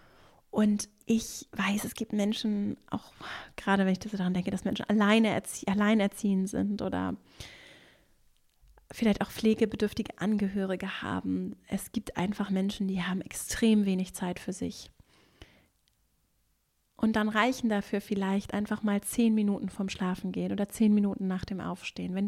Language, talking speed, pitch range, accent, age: German, 145 wpm, 190-215 Hz, German, 30-49